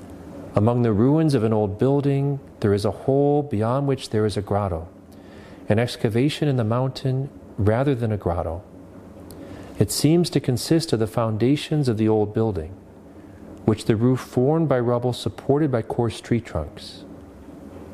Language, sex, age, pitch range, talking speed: English, male, 40-59, 95-130 Hz, 160 wpm